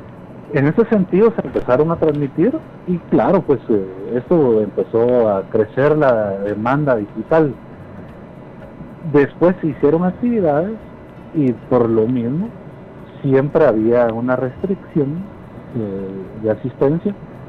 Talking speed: 115 wpm